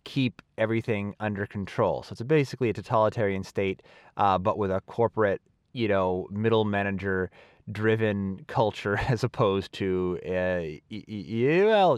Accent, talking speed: American, 145 wpm